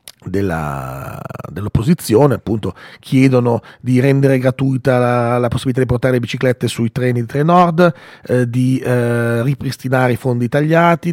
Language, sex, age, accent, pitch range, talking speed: Italian, male, 40-59, native, 115-140 Hz, 135 wpm